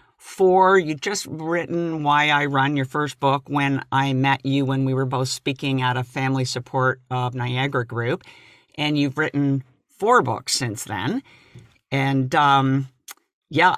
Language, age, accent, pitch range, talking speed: English, 50-69, American, 130-155 Hz, 155 wpm